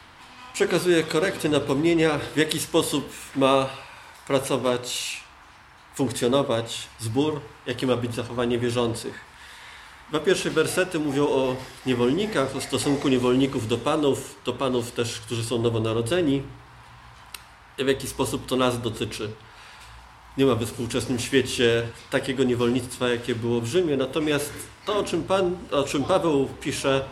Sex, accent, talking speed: male, native, 130 wpm